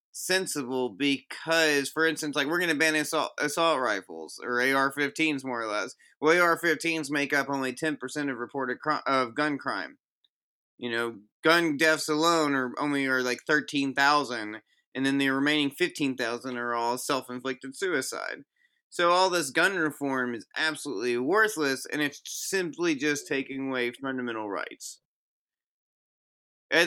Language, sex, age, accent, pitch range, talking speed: English, male, 30-49, American, 130-160 Hz, 150 wpm